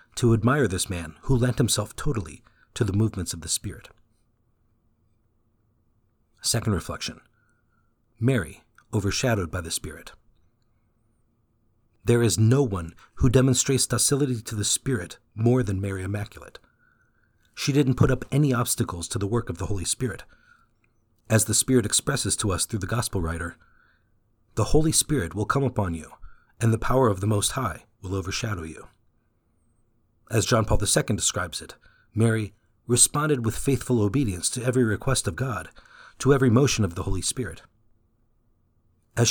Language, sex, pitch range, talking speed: English, male, 100-125 Hz, 150 wpm